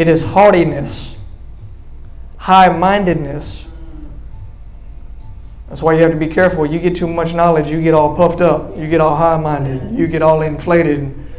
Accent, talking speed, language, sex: American, 165 wpm, English, male